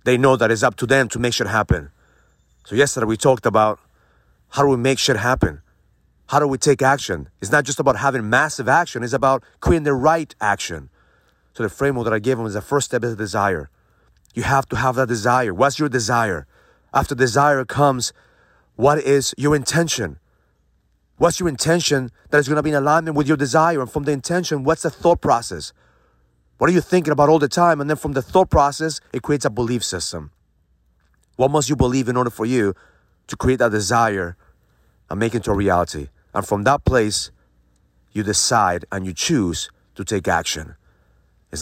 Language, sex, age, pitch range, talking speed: English, male, 40-59, 90-140 Hz, 200 wpm